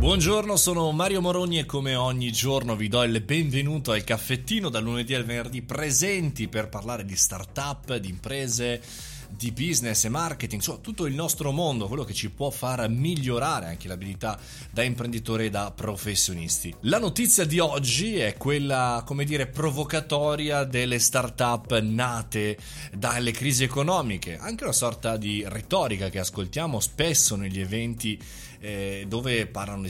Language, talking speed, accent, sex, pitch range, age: Italian, 150 wpm, native, male, 105-140 Hz, 30-49